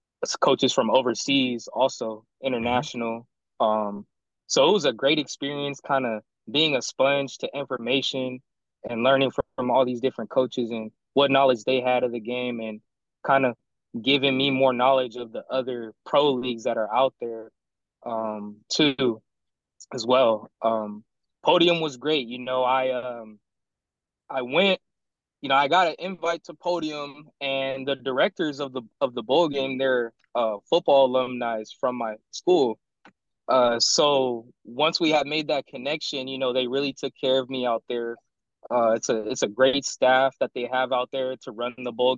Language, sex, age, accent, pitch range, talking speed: English, male, 20-39, American, 120-135 Hz, 175 wpm